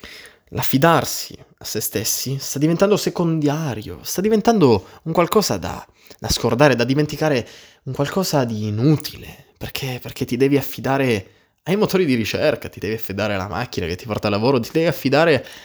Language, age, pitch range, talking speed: Italian, 20-39, 110-155 Hz, 155 wpm